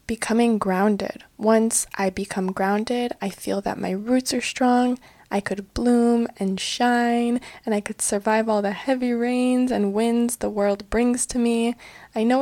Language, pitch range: English, 205-255 Hz